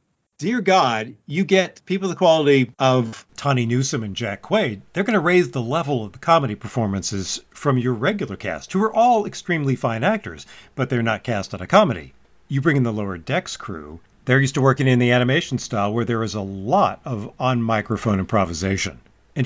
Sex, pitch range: male, 105-135 Hz